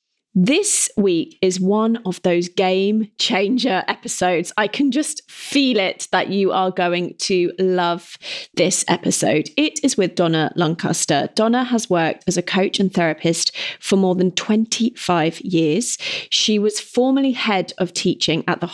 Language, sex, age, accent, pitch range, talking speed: English, female, 30-49, British, 175-225 Hz, 155 wpm